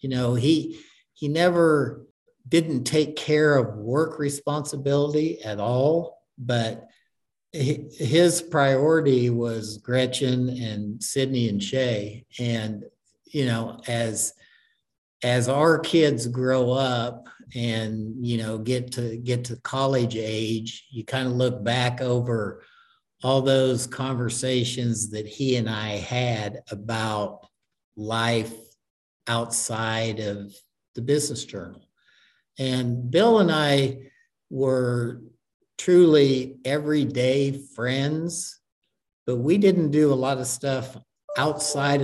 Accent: American